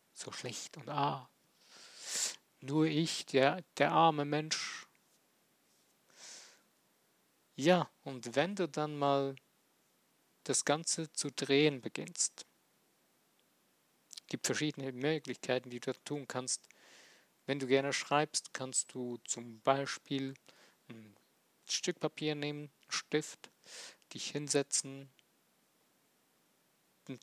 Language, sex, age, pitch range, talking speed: German, male, 50-69, 135-160 Hz, 100 wpm